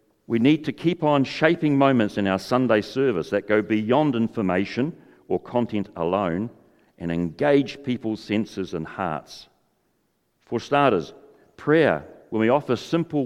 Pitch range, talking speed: 95-130 Hz, 140 wpm